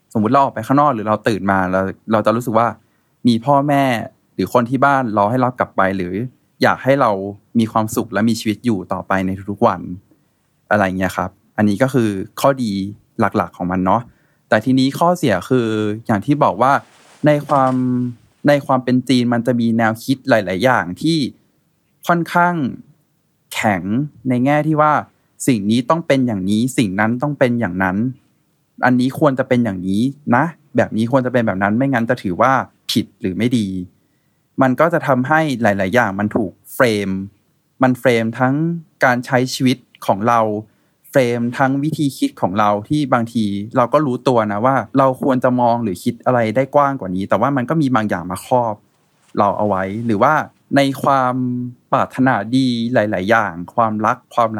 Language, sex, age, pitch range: Thai, male, 20-39, 105-135 Hz